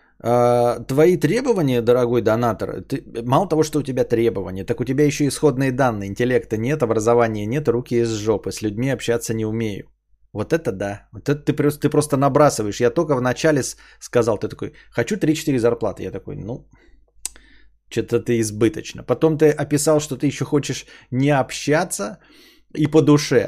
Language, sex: Bulgarian, male